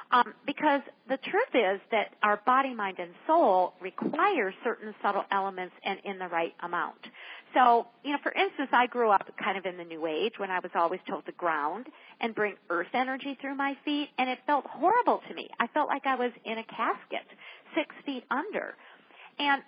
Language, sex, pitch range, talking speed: English, female, 185-280 Hz, 200 wpm